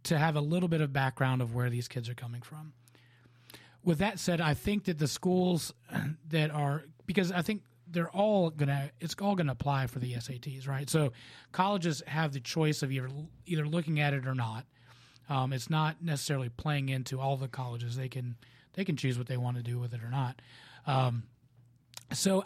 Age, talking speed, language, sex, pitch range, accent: 30-49, 215 wpm, English, male, 125-170 Hz, American